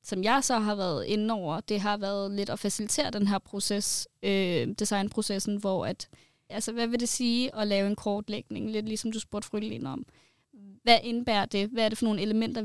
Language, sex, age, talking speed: Danish, female, 20-39, 210 wpm